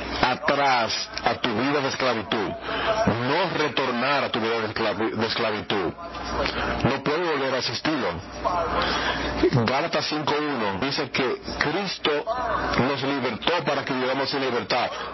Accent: Mexican